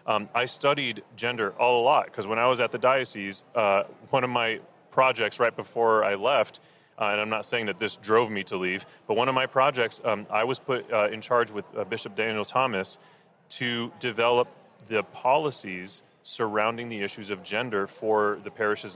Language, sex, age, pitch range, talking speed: English, male, 30-49, 110-130 Hz, 200 wpm